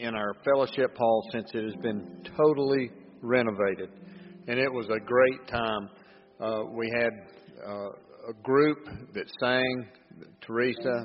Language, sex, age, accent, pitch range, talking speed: English, male, 50-69, American, 110-135 Hz, 135 wpm